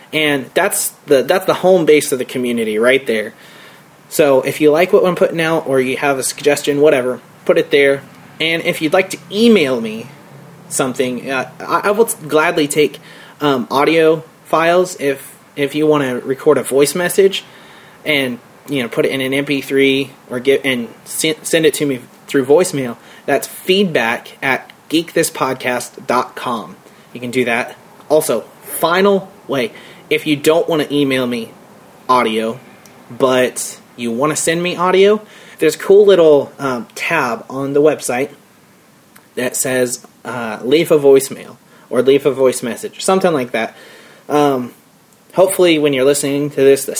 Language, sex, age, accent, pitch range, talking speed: English, male, 30-49, American, 135-180 Hz, 165 wpm